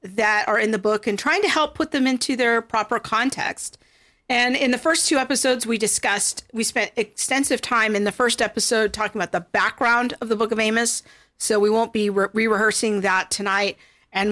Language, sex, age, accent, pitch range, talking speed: English, female, 50-69, American, 215-250 Hz, 200 wpm